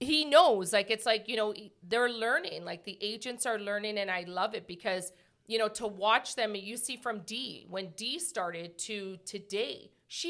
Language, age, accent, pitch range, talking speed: English, 40-59, American, 205-255 Hz, 200 wpm